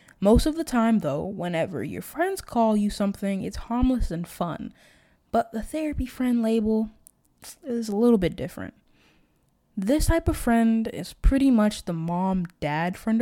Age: 20-39